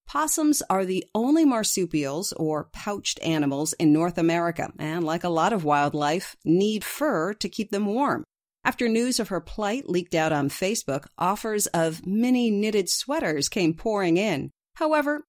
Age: 40-59